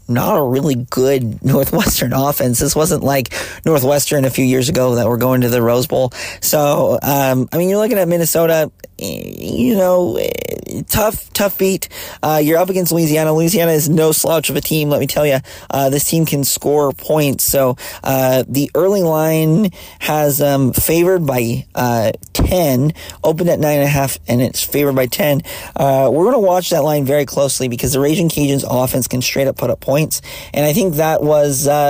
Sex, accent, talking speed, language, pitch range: male, American, 190 wpm, English, 130-155 Hz